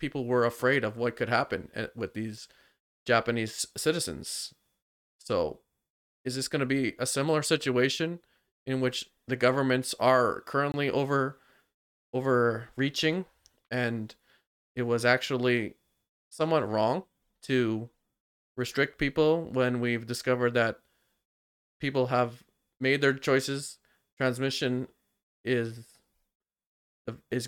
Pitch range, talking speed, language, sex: 115-130 Hz, 105 wpm, English, male